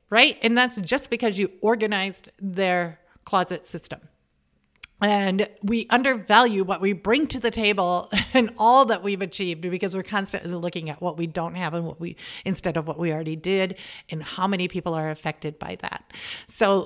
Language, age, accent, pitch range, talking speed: English, 40-59, American, 170-205 Hz, 180 wpm